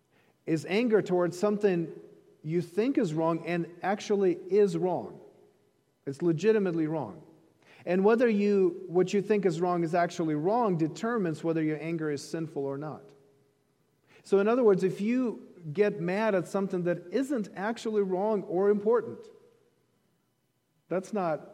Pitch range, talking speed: 155-210 Hz, 145 wpm